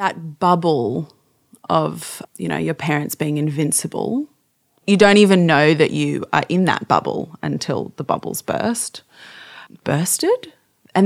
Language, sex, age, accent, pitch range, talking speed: English, female, 30-49, Australian, 150-195 Hz, 135 wpm